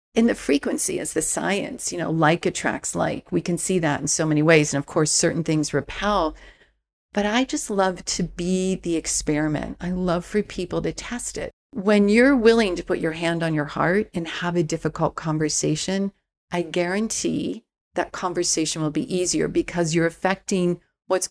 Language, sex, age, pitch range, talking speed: English, female, 40-59, 165-205 Hz, 185 wpm